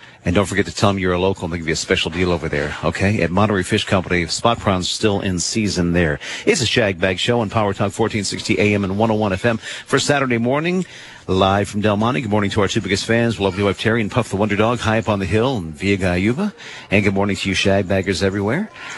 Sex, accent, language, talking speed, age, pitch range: male, American, English, 250 wpm, 50-69, 90-120 Hz